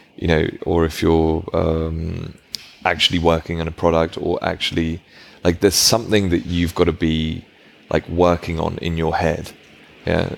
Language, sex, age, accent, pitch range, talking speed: English, male, 20-39, British, 80-95 Hz, 160 wpm